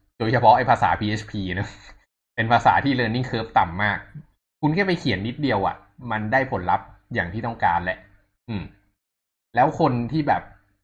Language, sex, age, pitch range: Thai, male, 20-39, 95-120 Hz